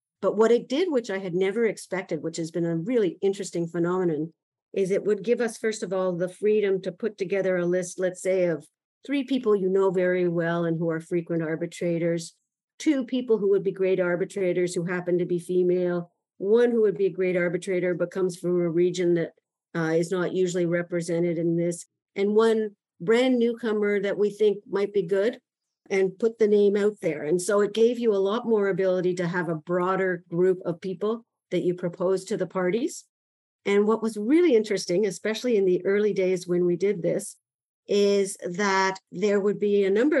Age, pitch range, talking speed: 50-69, 175-205 Hz, 205 wpm